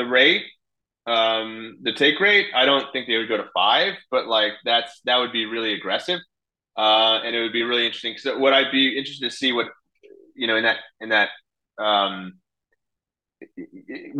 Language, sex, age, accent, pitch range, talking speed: English, male, 30-49, American, 105-125 Hz, 180 wpm